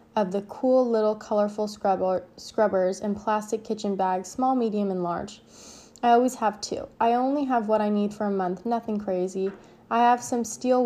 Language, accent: English, American